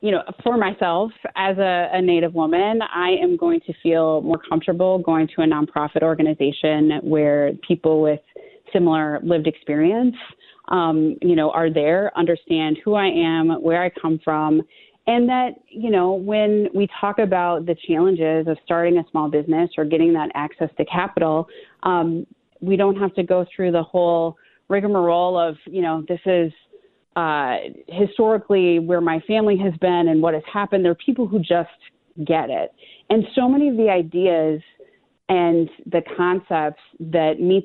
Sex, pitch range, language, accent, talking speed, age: female, 160-195 Hz, English, American, 165 wpm, 30-49